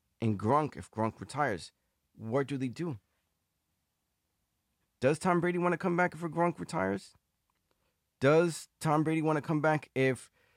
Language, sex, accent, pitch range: English, male, American, 110-155 Hz